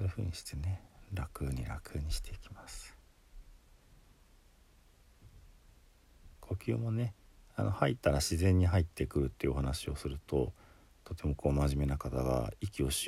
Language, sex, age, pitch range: Japanese, male, 50-69, 70-100 Hz